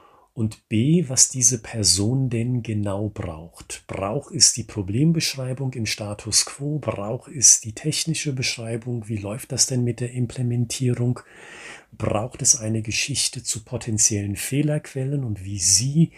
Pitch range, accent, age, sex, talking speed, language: 95-120 Hz, German, 40-59, male, 135 wpm, German